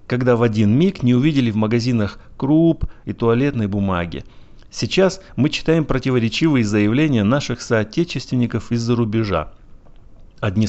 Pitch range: 105-150 Hz